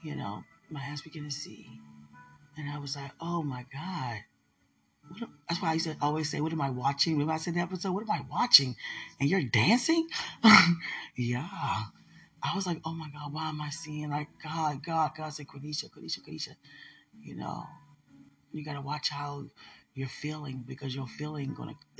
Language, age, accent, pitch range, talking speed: English, 30-49, American, 135-185 Hz, 190 wpm